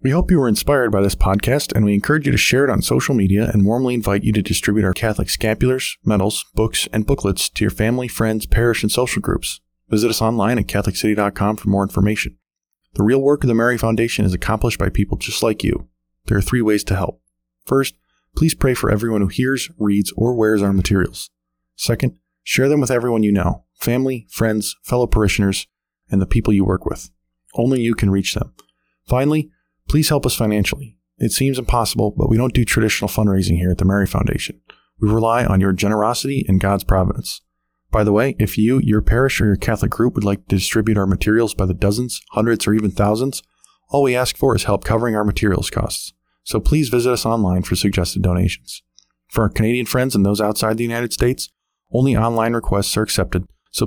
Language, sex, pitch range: English, male, 95-120 Hz